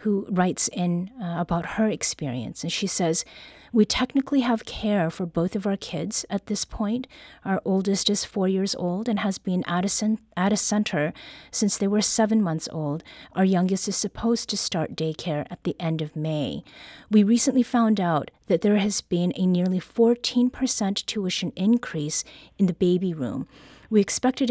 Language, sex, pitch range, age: English, female, 180-220 Hz, 30-49